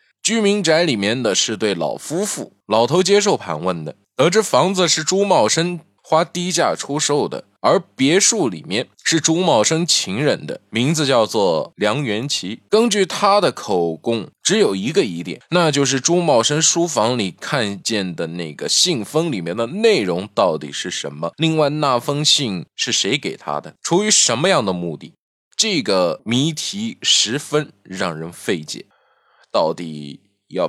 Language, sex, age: Chinese, male, 20-39